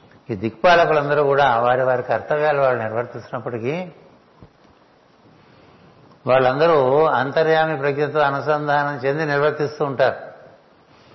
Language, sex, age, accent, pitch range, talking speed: Telugu, male, 60-79, native, 130-150 Hz, 80 wpm